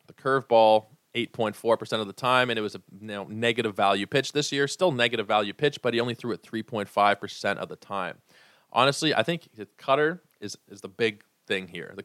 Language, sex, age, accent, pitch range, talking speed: English, male, 20-39, American, 100-125 Hz, 210 wpm